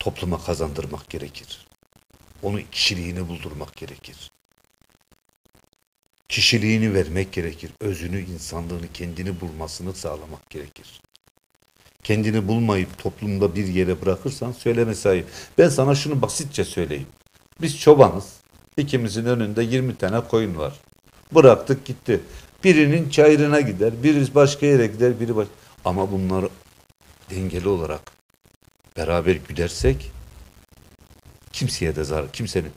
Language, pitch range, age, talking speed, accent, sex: Turkish, 85-115 Hz, 60-79, 105 wpm, native, male